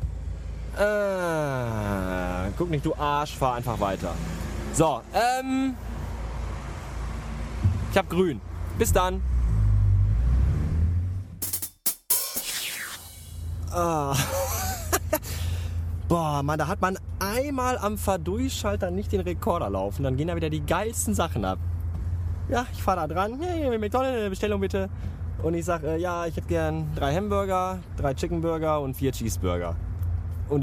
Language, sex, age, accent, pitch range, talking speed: German, male, 20-39, German, 85-145 Hz, 120 wpm